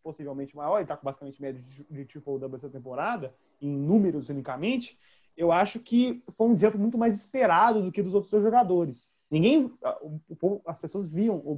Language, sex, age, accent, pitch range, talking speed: Portuguese, male, 20-39, Brazilian, 140-200 Hz, 190 wpm